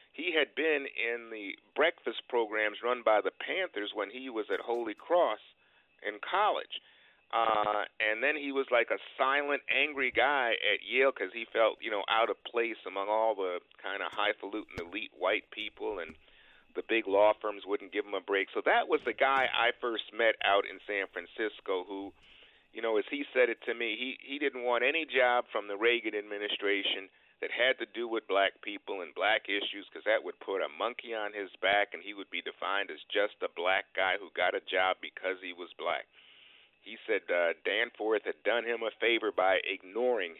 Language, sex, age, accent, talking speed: English, male, 50-69, American, 205 wpm